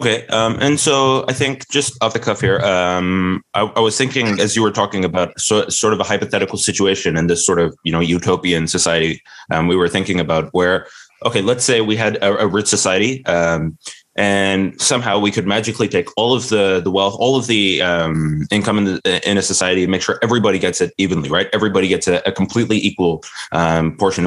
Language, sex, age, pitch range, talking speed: English, male, 20-39, 90-105 Hz, 220 wpm